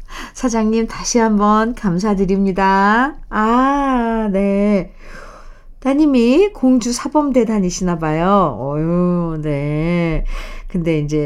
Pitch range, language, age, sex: 165-215 Hz, Korean, 50-69, female